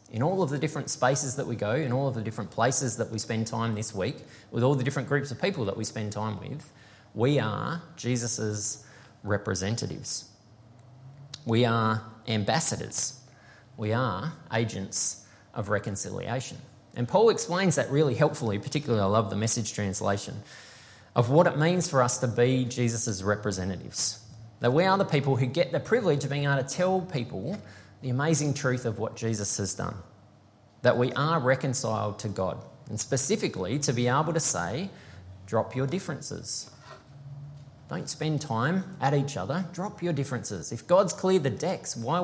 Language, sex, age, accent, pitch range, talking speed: English, male, 20-39, Australian, 110-145 Hz, 170 wpm